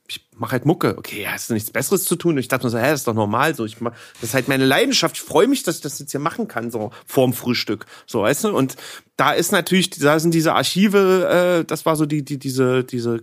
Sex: male